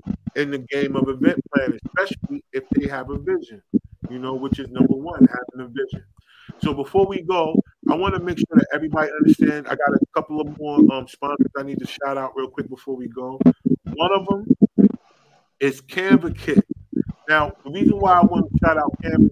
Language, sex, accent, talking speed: English, male, American, 210 wpm